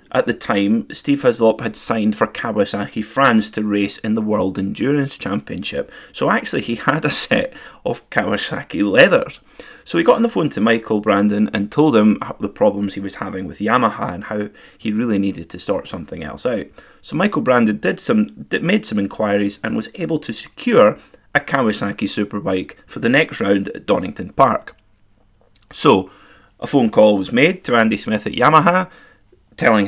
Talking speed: 180 wpm